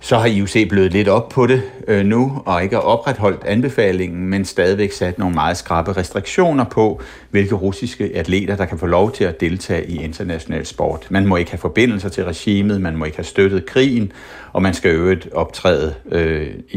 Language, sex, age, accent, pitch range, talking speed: Danish, male, 60-79, native, 95-120 Hz, 195 wpm